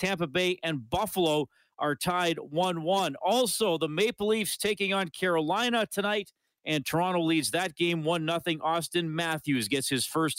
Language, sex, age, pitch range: English, male, 40-59, 115-160 Hz